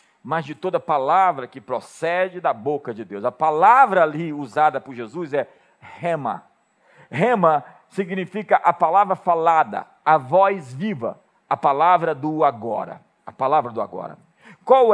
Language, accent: Portuguese, Brazilian